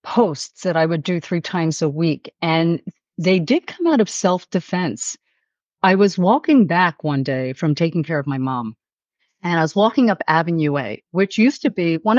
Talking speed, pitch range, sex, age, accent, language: 195 wpm, 165-240 Hz, female, 50-69, American, English